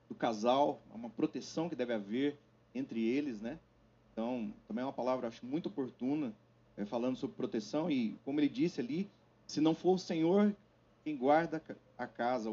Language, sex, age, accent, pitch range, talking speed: Portuguese, male, 30-49, Brazilian, 115-145 Hz, 170 wpm